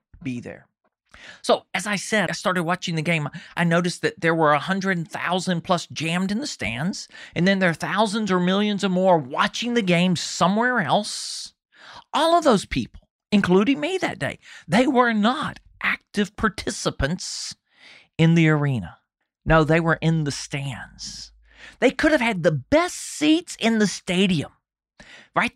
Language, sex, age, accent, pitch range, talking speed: English, male, 40-59, American, 165-250 Hz, 165 wpm